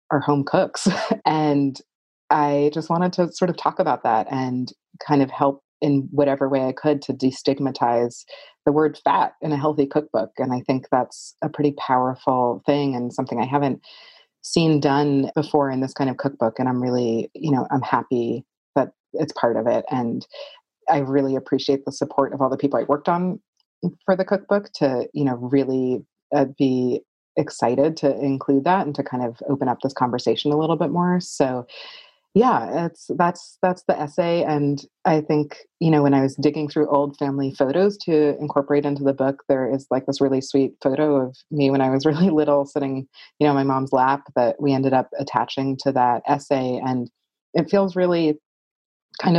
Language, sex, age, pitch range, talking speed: English, female, 30-49, 130-155 Hz, 195 wpm